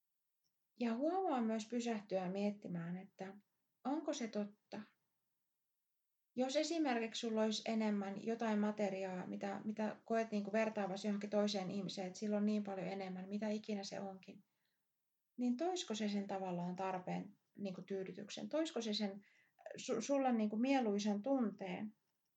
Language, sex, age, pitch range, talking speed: Finnish, female, 30-49, 195-225 Hz, 140 wpm